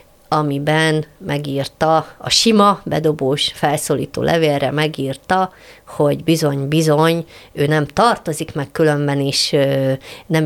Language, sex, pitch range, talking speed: Hungarian, female, 140-165 Hz, 105 wpm